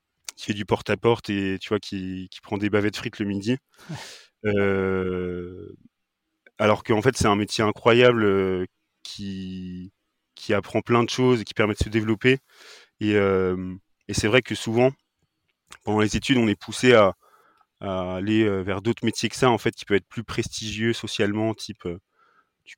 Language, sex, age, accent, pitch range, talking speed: French, male, 30-49, French, 95-115 Hz, 180 wpm